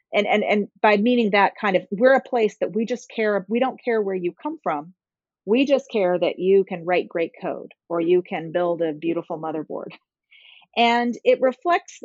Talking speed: 205 wpm